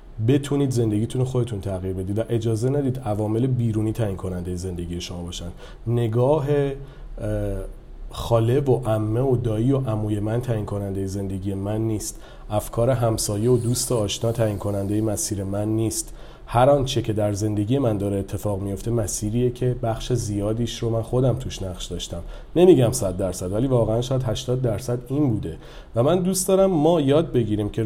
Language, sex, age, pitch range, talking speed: Persian, male, 40-59, 100-125 Hz, 165 wpm